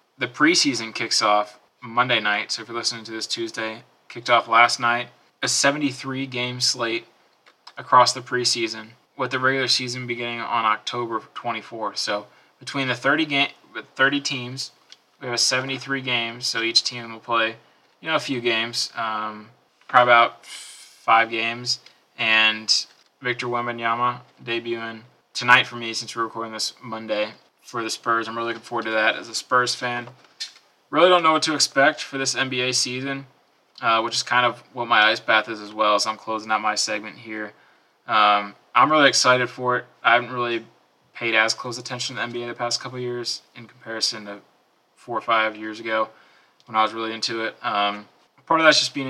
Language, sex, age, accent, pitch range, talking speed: English, male, 20-39, American, 110-125 Hz, 185 wpm